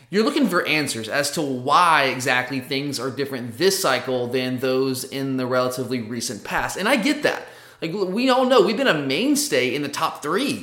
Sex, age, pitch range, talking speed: male, 20-39, 135-180 Hz, 205 wpm